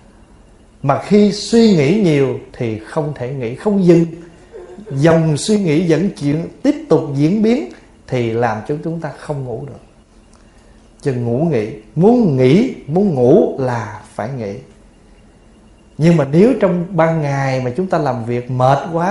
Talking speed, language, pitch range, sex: 155 wpm, Vietnamese, 120-170 Hz, male